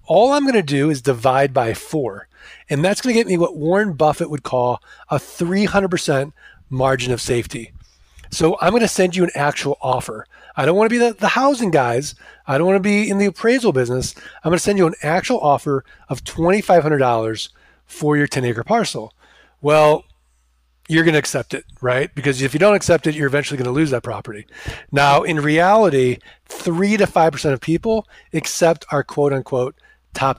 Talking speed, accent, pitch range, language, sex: 195 wpm, American, 135-200 Hz, English, male